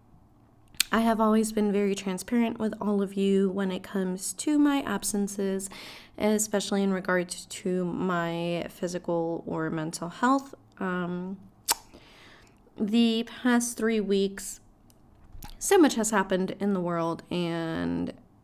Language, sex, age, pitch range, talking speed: English, female, 20-39, 185-230 Hz, 125 wpm